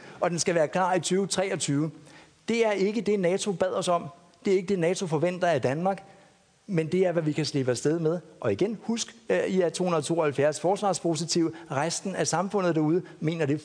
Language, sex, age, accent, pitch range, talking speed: Danish, male, 60-79, native, 155-195 Hz, 200 wpm